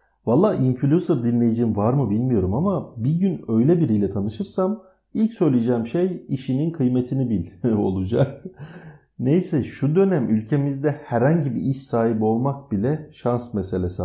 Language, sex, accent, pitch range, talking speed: Turkish, male, native, 100-135 Hz, 130 wpm